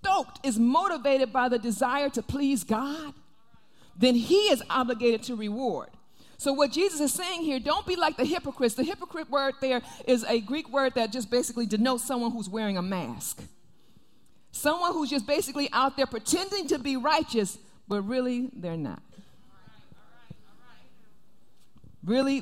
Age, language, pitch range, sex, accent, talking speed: 50-69, English, 220-275 Hz, female, American, 155 wpm